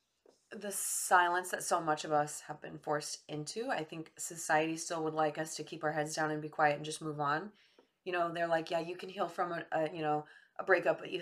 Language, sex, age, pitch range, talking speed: English, female, 20-39, 155-195 Hz, 250 wpm